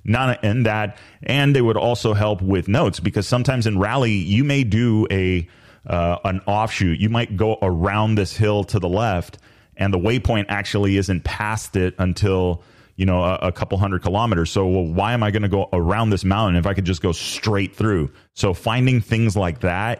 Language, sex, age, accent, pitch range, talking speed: English, male, 30-49, American, 90-105 Hz, 205 wpm